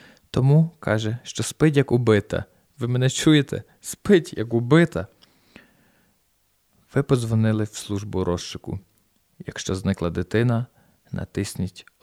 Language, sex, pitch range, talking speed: Ukrainian, male, 105-130 Hz, 105 wpm